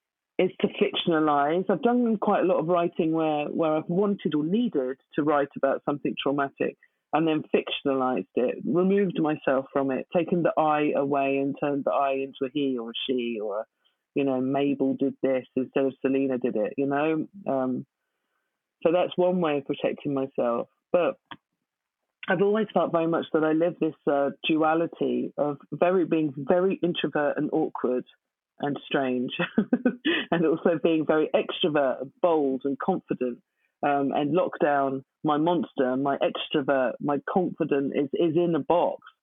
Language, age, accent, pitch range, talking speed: English, 40-59, British, 135-175 Hz, 165 wpm